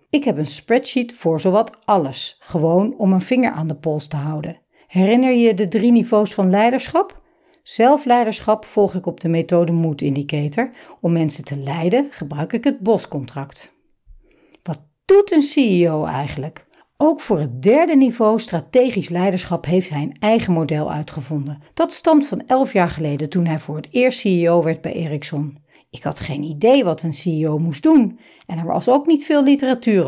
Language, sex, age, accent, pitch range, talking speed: Dutch, female, 60-79, Dutch, 155-240 Hz, 175 wpm